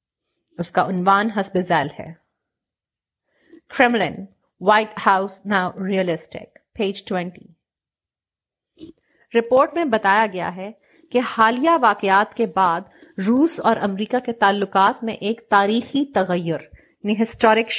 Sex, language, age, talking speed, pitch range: female, Urdu, 30-49, 85 wpm, 195-245 Hz